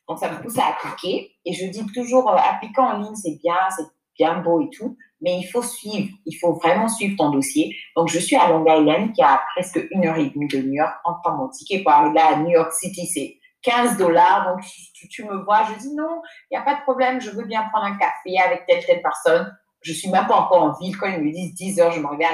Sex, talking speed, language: female, 265 wpm, French